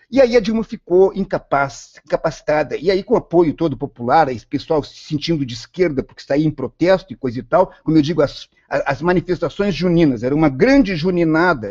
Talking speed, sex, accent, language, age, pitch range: 205 wpm, male, Brazilian, Portuguese, 50-69, 140-220 Hz